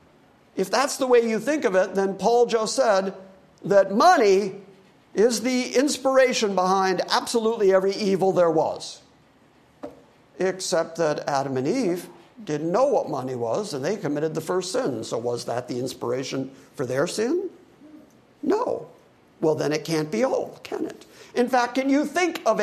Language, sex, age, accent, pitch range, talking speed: English, male, 50-69, American, 180-240 Hz, 165 wpm